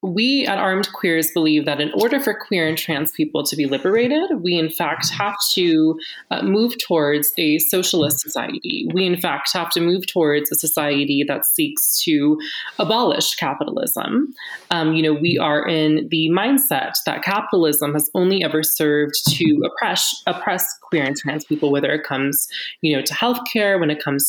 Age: 20-39